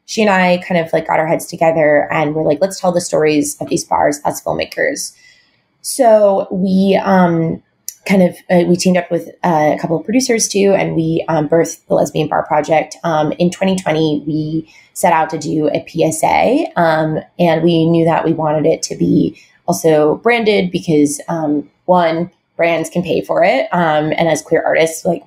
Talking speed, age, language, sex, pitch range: 190 wpm, 20-39, English, female, 155-180 Hz